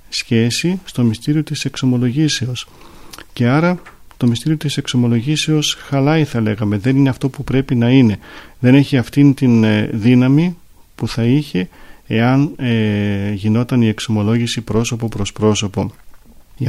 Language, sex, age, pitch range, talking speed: Greek, male, 40-59, 110-125 Hz, 135 wpm